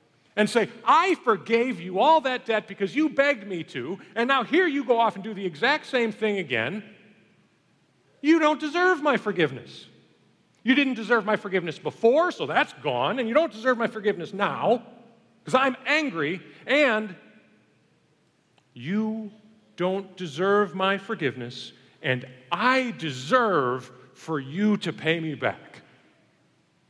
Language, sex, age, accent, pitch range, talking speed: English, male, 40-59, American, 135-225 Hz, 145 wpm